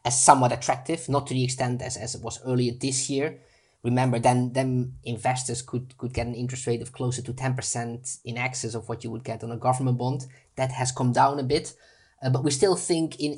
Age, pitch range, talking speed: 20-39, 120-130 Hz, 230 wpm